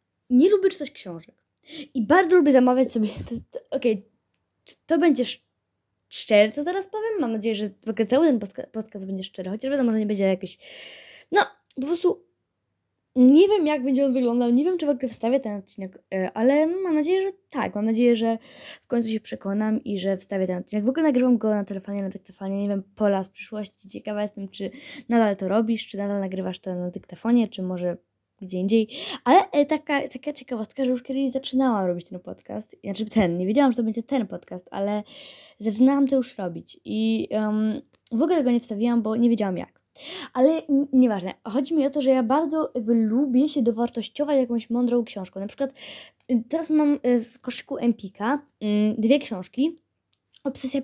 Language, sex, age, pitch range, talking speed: Polish, female, 20-39, 205-275 Hz, 190 wpm